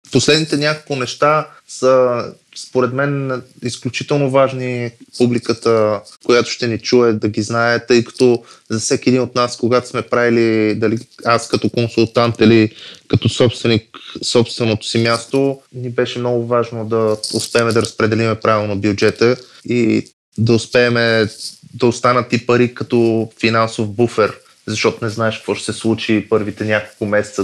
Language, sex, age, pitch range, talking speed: Bulgarian, male, 20-39, 110-125 Hz, 145 wpm